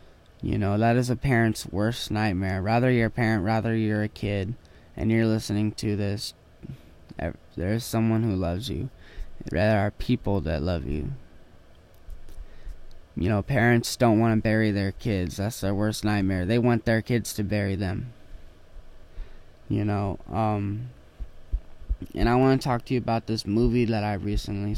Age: 10-29